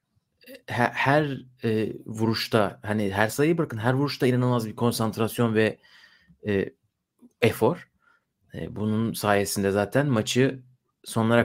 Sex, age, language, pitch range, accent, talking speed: male, 30-49, Turkish, 115-145 Hz, native, 115 wpm